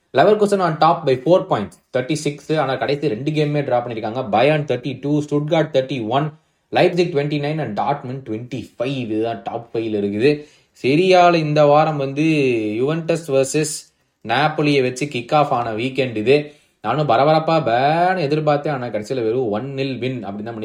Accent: native